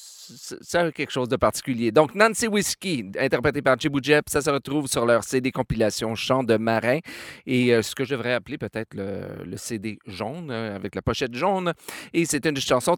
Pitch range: 115-145 Hz